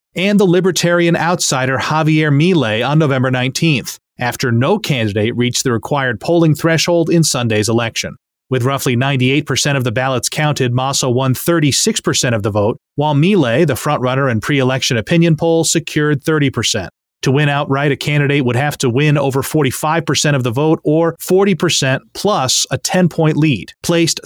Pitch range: 130-165 Hz